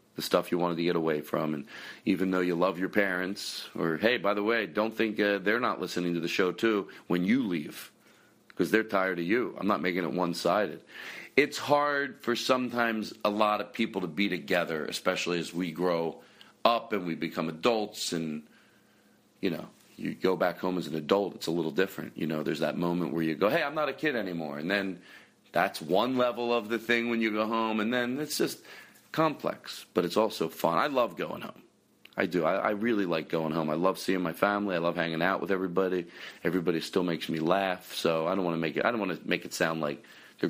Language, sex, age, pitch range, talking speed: English, male, 40-59, 85-110 Hz, 230 wpm